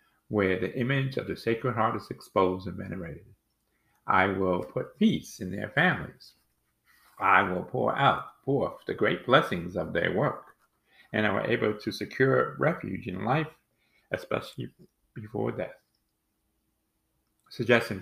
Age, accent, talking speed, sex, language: 50-69, American, 145 wpm, male, English